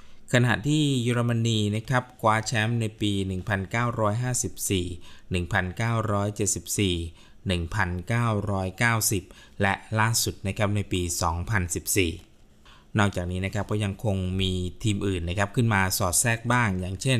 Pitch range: 90-110 Hz